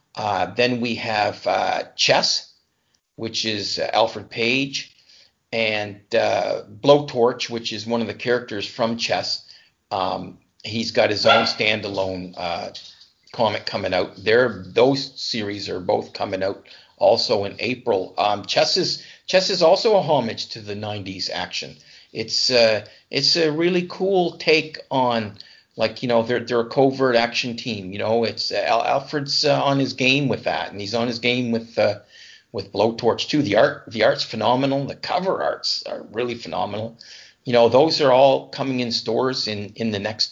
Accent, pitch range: American, 105-130 Hz